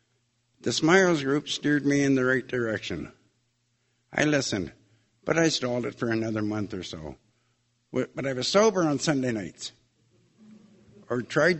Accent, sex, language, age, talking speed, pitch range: American, male, English, 60-79, 150 wpm, 115-140 Hz